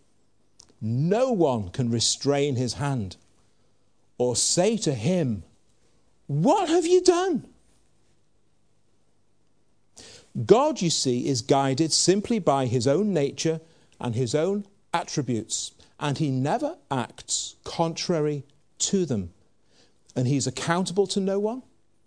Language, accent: English, British